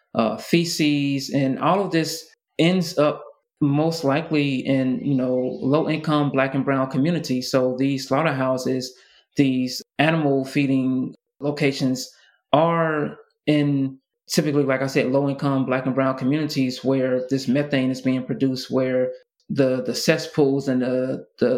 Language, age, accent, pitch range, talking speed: English, 20-39, American, 130-150 Hz, 135 wpm